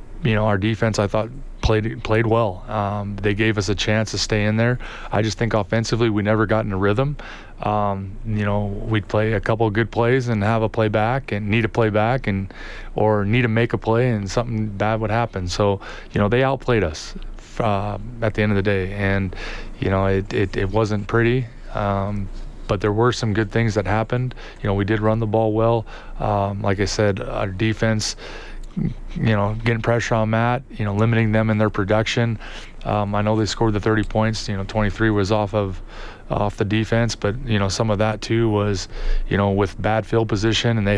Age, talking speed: 20-39, 225 wpm